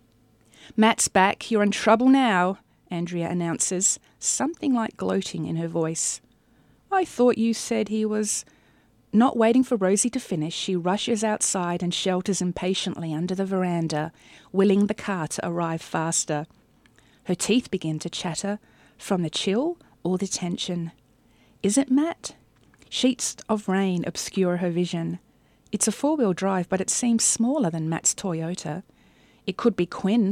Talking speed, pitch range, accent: 150 wpm, 170-215 Hz, Australian